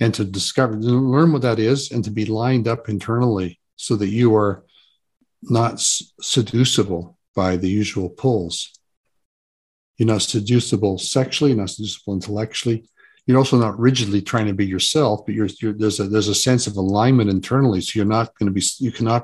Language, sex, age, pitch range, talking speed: English, male, 50-69, 100-125 Hz, 185 wpm